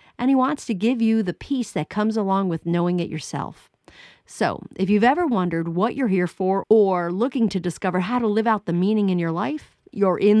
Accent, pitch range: American, 180-230 Hz